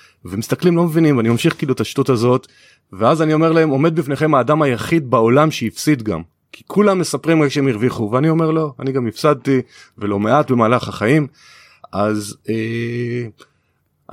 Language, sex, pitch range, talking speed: Hebrew, male, 110-145 Hz, 160 wpm